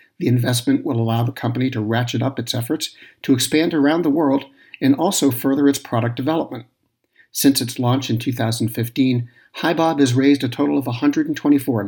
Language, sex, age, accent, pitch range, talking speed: English, male, 50-69, American, 120-140 Hz, 170 wpm